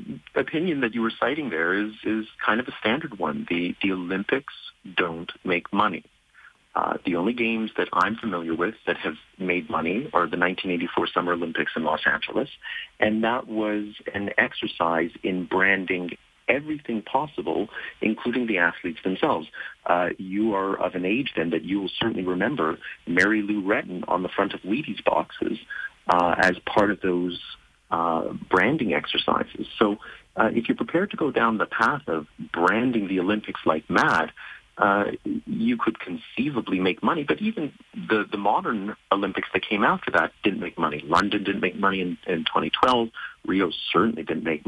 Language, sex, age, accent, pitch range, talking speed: English, male, 40-59, American, 95-120 Hz, 170 wpm